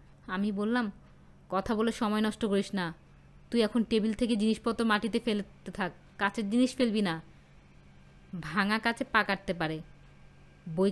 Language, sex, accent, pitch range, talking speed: Bengali, female, native, 185-250 Hz, 135 wpm